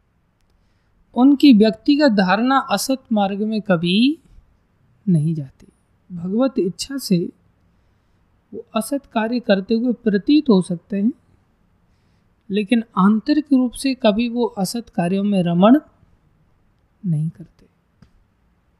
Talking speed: 105 wpm